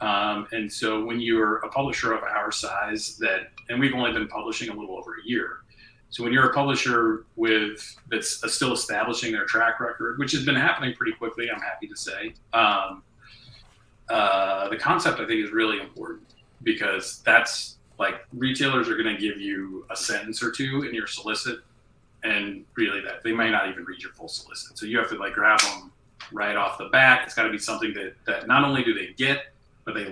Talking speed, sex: 200 wpm, male